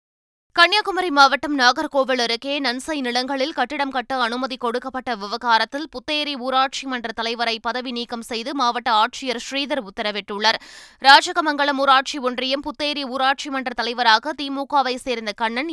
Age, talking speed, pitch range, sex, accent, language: 20-39, 120 wpm, 235-275 Hz, female, native, Tamil